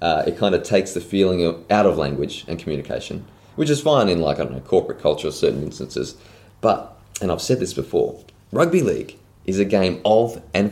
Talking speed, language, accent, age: 215 wpm, English, Australian, 20-39